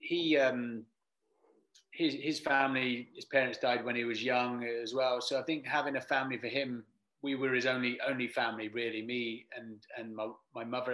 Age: 30-49